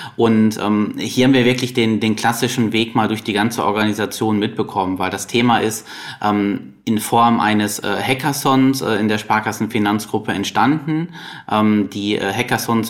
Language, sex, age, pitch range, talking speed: English, male, 20-39, 105-125 Hz, 165 wpm